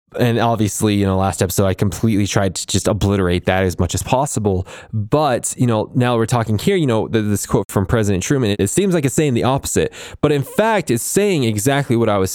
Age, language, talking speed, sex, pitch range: 20-39, English, 230 wpm, male, 105-140 Hz